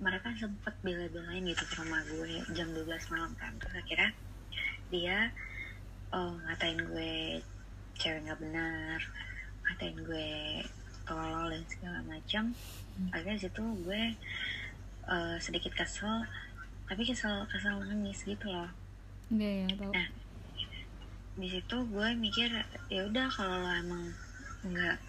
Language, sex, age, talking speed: Indonesian, female, 20-39, 110 wpm